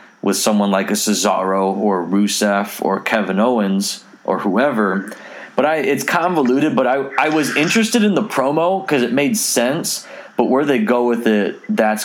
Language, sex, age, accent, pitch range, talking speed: English, male, 30-49, American, 105-135 Hz, 175 wpm